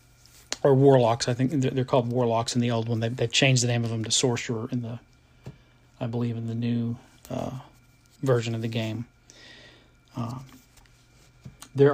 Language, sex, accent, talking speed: English, male, American, 170 wpm